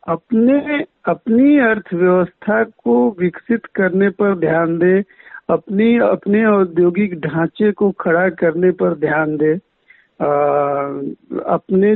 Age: 60-79